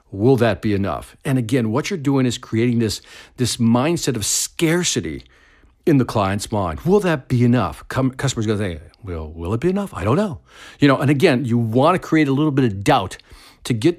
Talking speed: 220 wpm